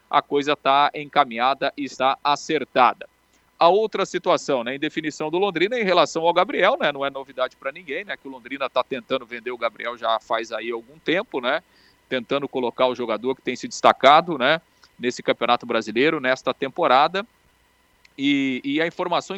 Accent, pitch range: Brazilian, 130-170 Hz